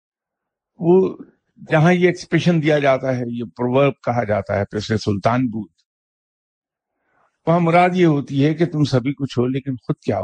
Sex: male